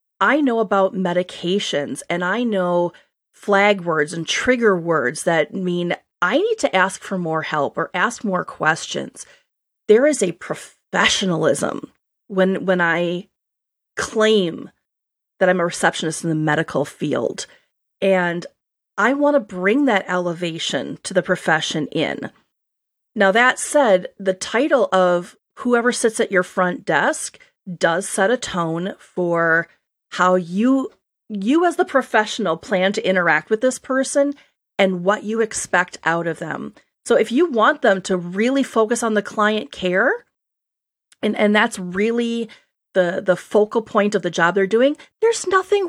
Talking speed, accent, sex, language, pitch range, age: 150 wpm, American, female, English, 180-250 Hz, 30-49